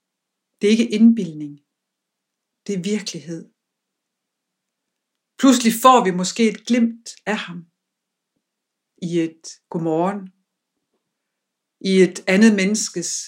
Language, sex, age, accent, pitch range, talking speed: Danish, female, 60-79, native, 180-210 Hz, 100 wpm